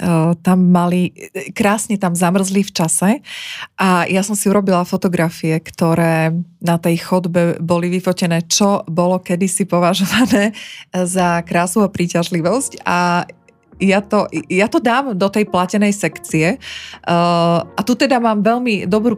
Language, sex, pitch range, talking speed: Slovak, female, 175-205 Hz, 130 wpm